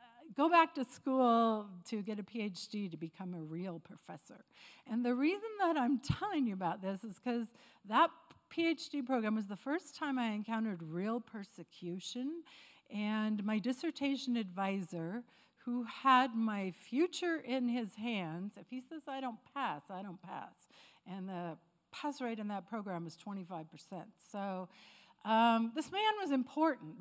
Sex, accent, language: female, American, English